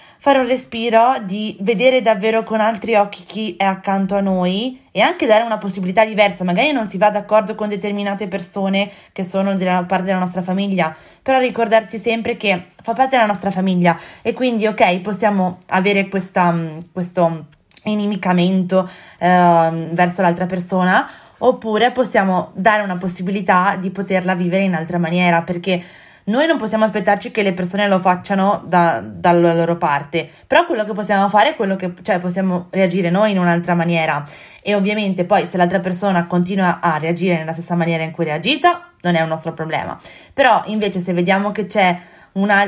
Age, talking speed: 20-39, 175 wpm